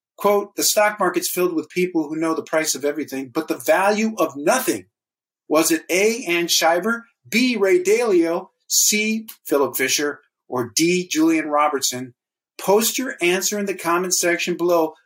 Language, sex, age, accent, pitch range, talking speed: English, male, 50-69, American, 165-225 Hz, 165 wpm